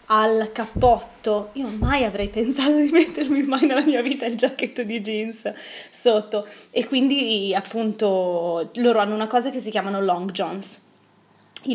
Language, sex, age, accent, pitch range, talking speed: Italian, female, 20-39, native, 205-250 Hz, 155 wpm